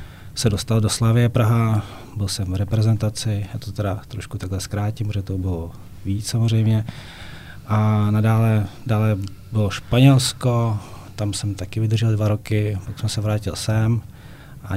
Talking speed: 150 wpm